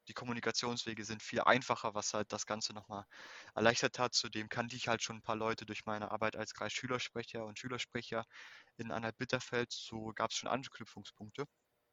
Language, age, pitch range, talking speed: German, 20-39, 105-120 Hz, 180 wpm